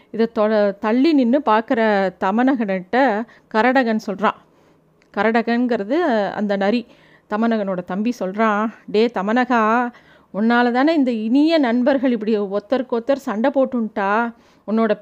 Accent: native